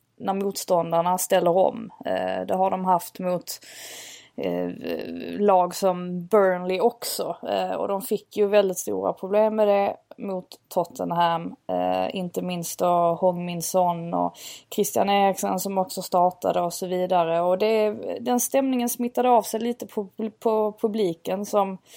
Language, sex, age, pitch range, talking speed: Swedish, female, 20-39, 175-210 Hz, 135 wpm